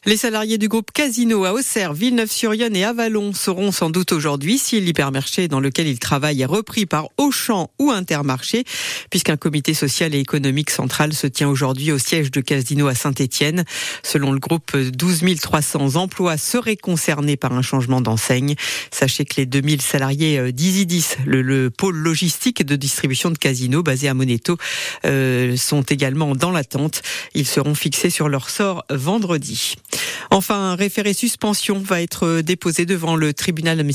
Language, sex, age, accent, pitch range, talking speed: French, female, 50-69, French, 140-195 Hz, 165 wpm